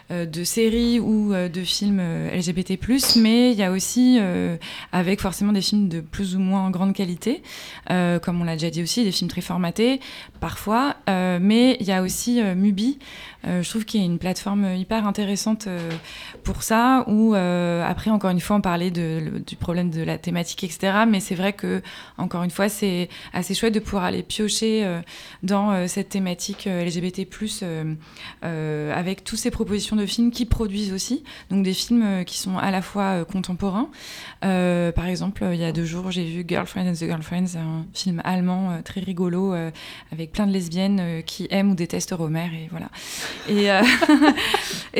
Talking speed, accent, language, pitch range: 200 wpm, French, French, 175-210 Hz